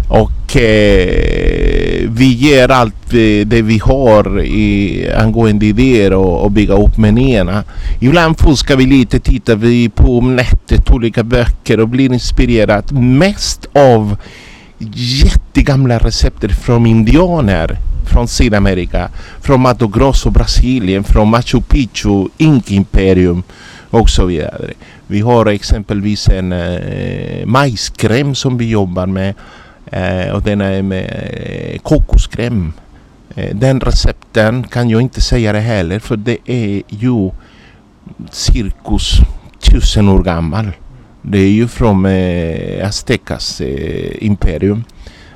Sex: male